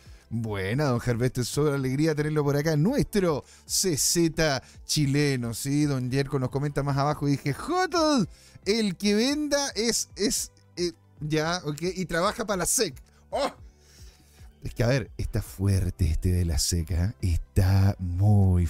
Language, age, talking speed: Spanish, 30-49, 155 wpm